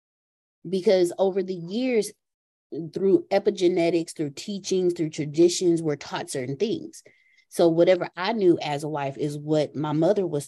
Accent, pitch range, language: American, 155-195 Hz, English